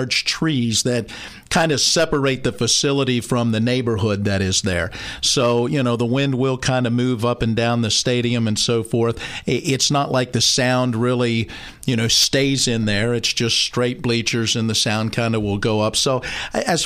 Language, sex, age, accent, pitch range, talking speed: English, male, 50-69, American, 115-135 Hz, 195 wpm